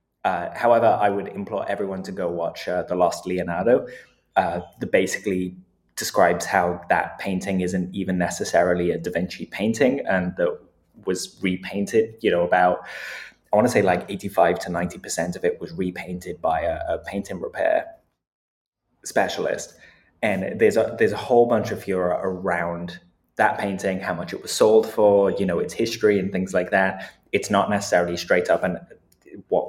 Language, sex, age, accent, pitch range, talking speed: English, male, 20-39, British, 85-100 Hz, 175 wpm